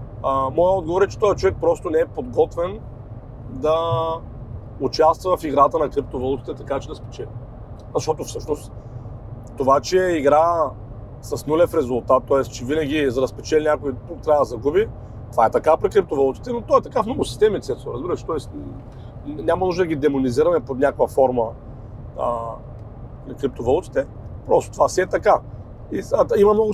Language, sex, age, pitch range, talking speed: Bulgarian, male, 40-59, 115-175 Hz, 160 wpm